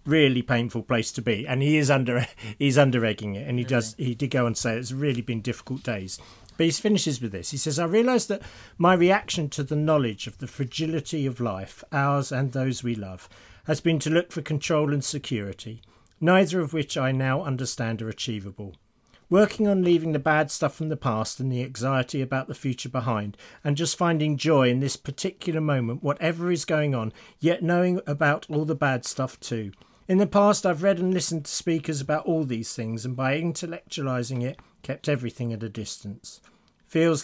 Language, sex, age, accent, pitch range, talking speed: English, male, 40-59, British, 120-155 Hz, 205 wpm